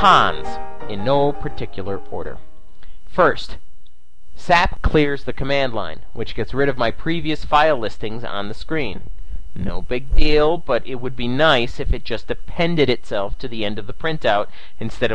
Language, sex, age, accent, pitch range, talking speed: English, male, 40-59, American, 105-155 Hz, 165 wpm